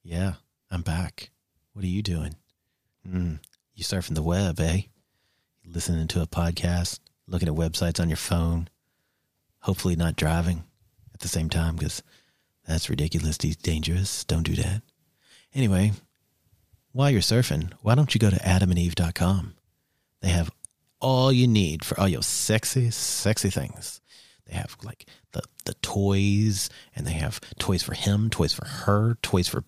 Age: 40-59